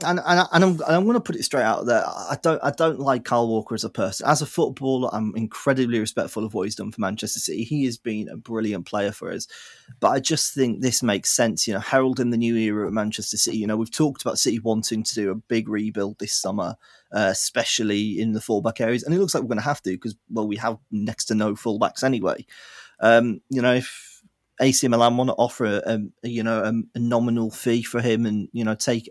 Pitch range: 110-130 Hz